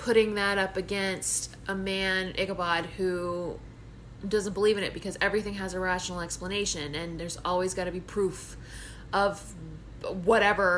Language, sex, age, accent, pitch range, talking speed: English, female, 20-39, American, 170-210 Hz, 150 wpm